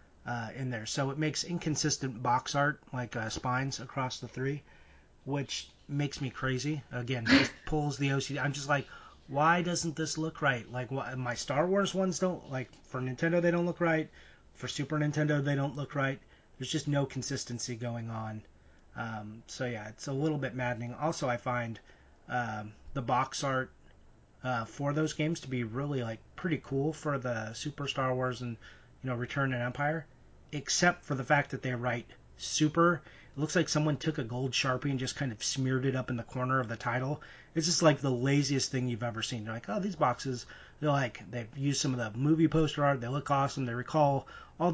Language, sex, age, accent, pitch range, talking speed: English, male, 30-49, American, 125-150 Hz, 205 wpm